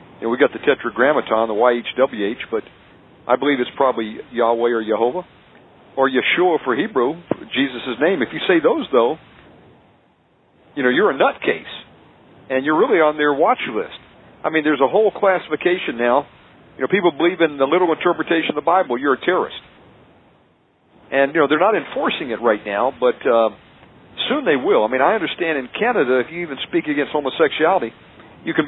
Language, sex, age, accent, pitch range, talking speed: English, male, 50-69, American, 130-170 Hz, 190 wpm